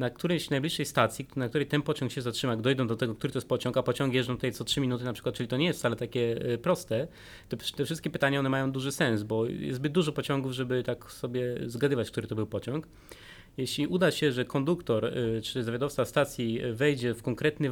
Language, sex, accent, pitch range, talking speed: Polish, male, native, 120-150 Hz, 220 wpm